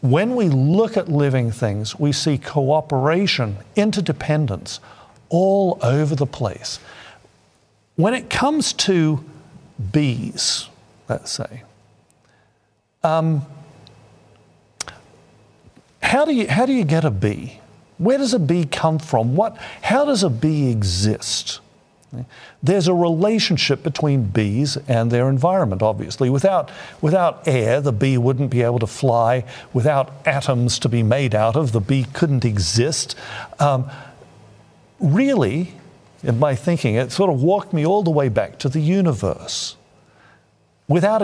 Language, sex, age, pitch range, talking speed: English, male, 50-69, 120-170 Hz, 130 wpm